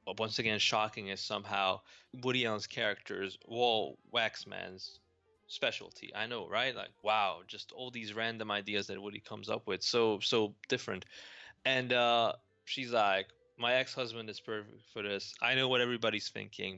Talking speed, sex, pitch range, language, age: 160 wpm, male, 105-125 Hz, English, 20-39